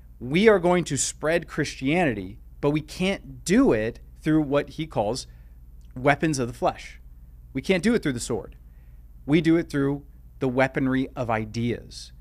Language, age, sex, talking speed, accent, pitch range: English, 30-49, male, 165 wpm, American, 105-150 Hz